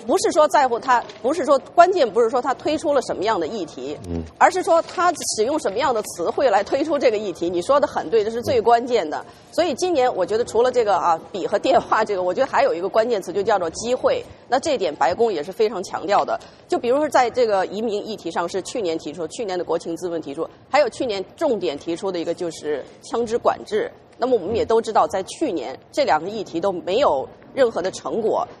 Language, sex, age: English, female, 30-49